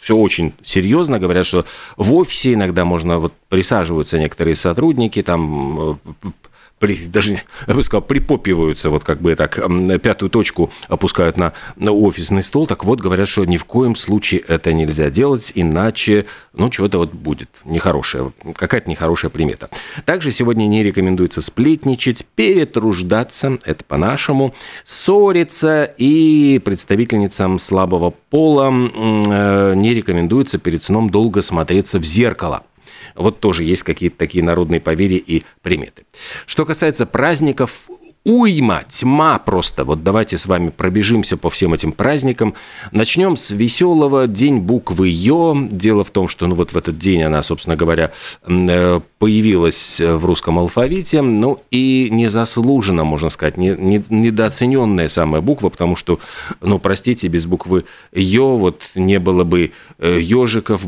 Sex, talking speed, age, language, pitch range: male, 135 wpm, 40-59, Russian, 85-120 Hz